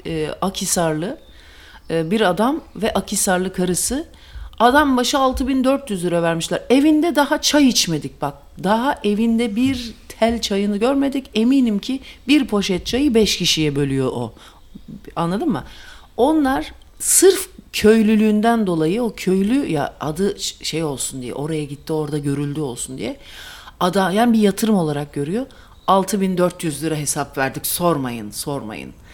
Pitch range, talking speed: 180-285 Hz, 130 wpm